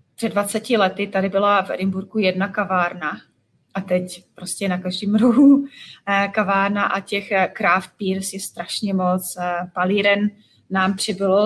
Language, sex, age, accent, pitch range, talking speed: Czech, female, 30-49, native, 190-225 Hz, 135 wpm